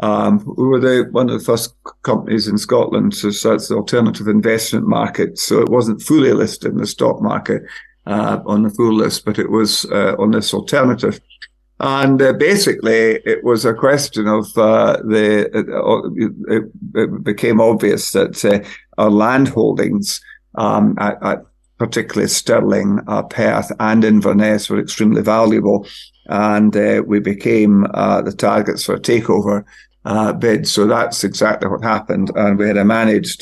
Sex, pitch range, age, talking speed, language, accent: male, 105-115 Hz, 50-69, 165 wpm, English, British